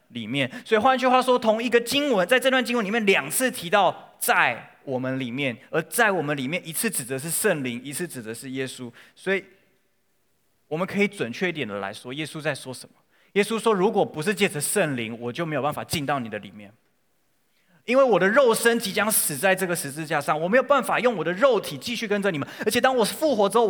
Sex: male